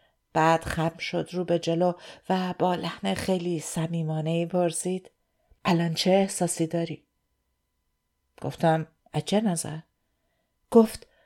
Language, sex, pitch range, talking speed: Persian, female, 170-205 Hz, 105 wpm